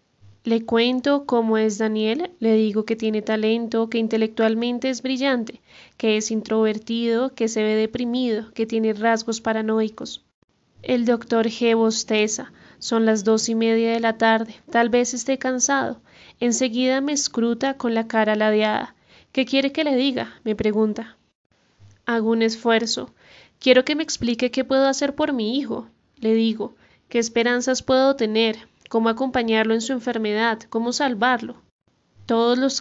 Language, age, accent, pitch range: Spanish, 20-39, Colombian, 220-250 Hz